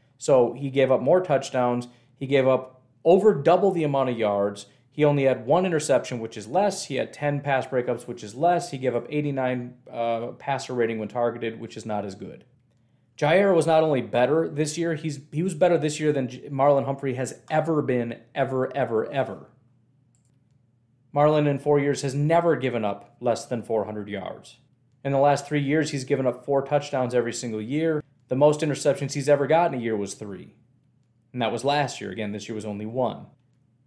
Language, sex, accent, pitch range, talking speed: English, male, American, 120-150 Hz, 200 wpm